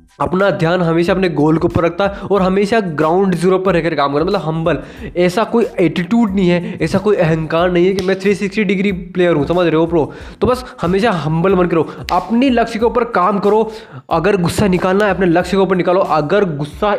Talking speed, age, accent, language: 220 wpm, 20-39, native, Hindi